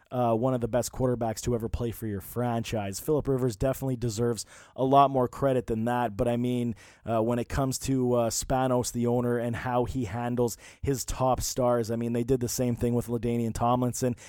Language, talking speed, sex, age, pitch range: English, 215 wpm, male, 20-39, 120-140 Hz